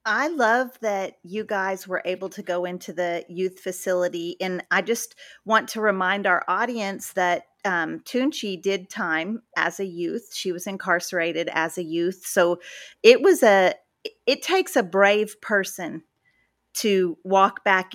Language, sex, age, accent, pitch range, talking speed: English, female, 30-49, American, 175-210 Hz, 155 wpm